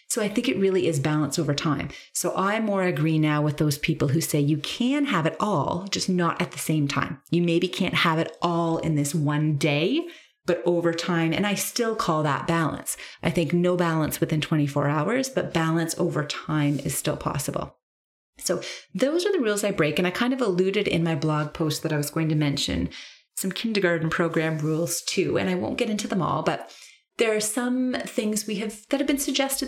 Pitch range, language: 150-190 Hz, English